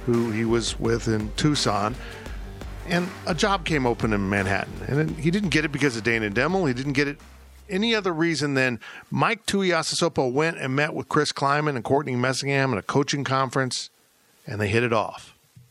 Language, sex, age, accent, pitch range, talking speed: English, male, 50-69, American, 115-165 Hz, 190 wpm